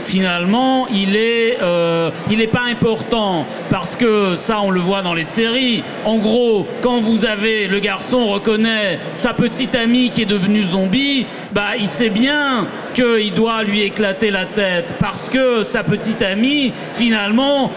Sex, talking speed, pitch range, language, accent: male, 160 wpm, 200-250 Hz, French, French